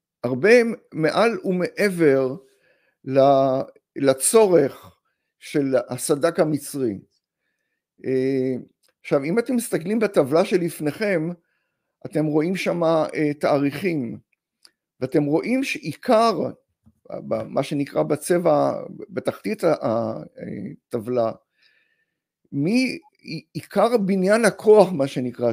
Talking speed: 70 wpm